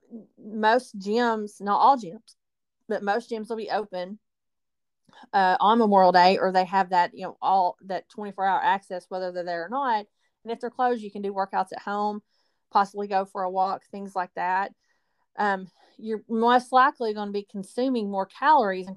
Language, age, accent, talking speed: English, 30-49, American, 185 wpm